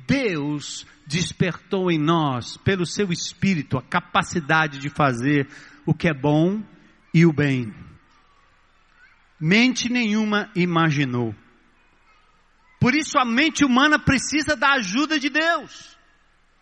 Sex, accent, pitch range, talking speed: male, Brazilian, 175-280 Hz, 110 wpm